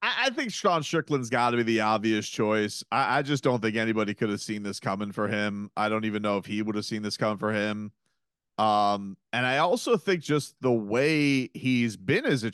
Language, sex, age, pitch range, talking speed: English, male, 30-49, 110-140 Hz, 230 wpm